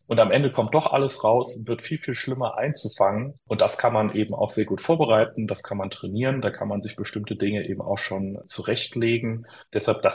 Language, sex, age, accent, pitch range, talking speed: German, male, 30-49, German, 105-130 Hz, 225 wpm